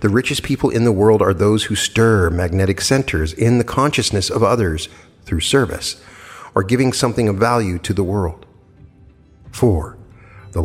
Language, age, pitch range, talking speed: English, 50-69, 90-115 Hz, 165 wpm